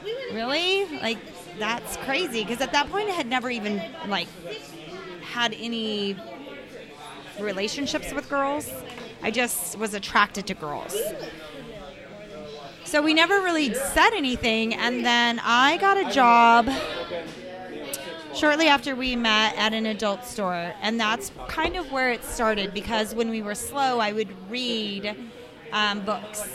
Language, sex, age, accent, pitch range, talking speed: English, female, 20-39, American, 205-260 Hz, 140 wpm